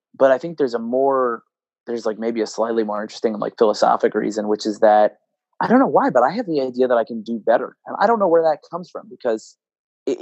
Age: 30-49